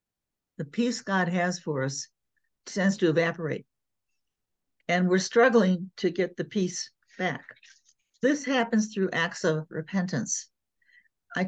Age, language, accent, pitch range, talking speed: 60-79, English, American, 160-210 Hz, 125 wpm